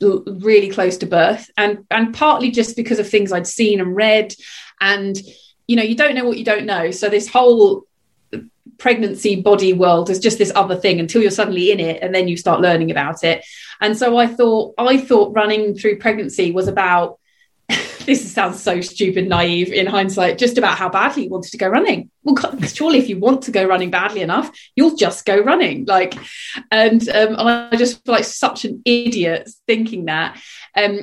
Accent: British